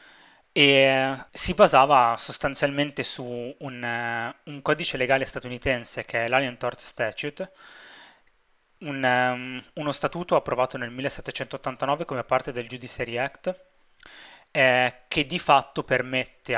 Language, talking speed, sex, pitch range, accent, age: Italian, 110 wpm, male, 120-140 Hz, native, 20-39